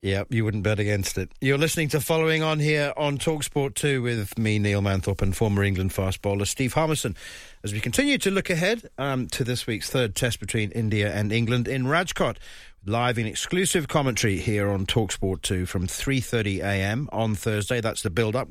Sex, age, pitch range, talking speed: male, 40-59, 100-125 Hz, 190 wpm